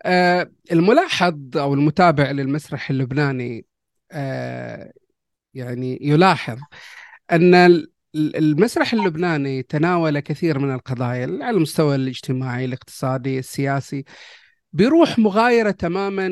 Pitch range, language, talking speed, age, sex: 145-185 Hz, Arabic, 80 wpm, 30-49, male